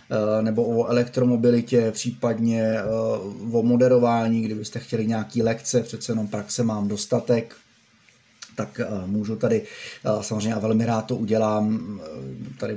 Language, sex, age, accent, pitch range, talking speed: Czech, male, 20-39, native, 110-120 Hz, 115 wpm